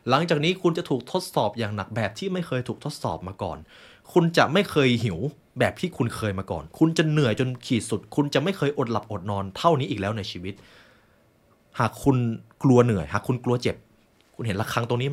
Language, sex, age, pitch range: Thai, male, 20-39, 100-125 Hz